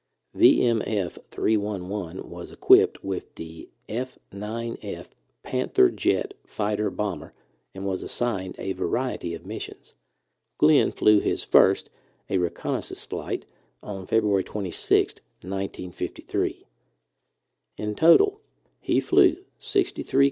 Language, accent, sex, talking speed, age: English, American, male, 95 wpm, 50-69